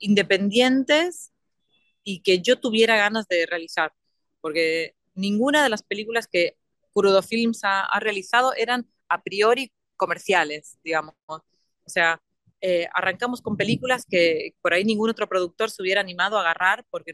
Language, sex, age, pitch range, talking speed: Spanish, female, 30-49, 175-220 Hz, 145 wpm